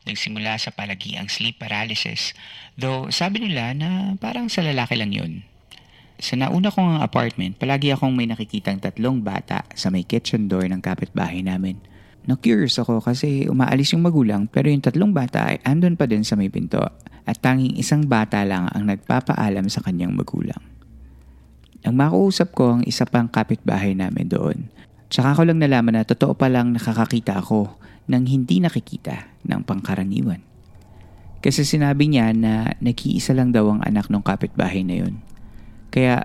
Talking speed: 160 wpm